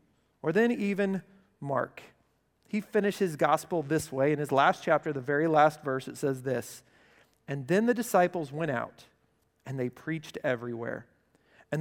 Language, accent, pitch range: English, American, 145-180 Hz